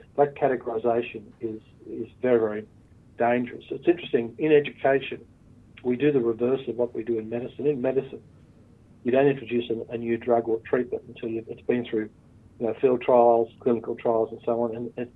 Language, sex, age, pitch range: English, male, 50-69, 115-130 Hz